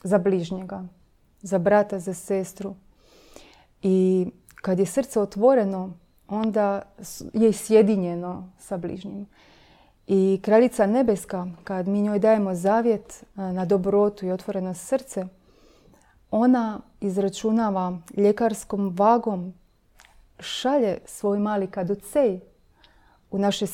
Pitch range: 190-220 Hz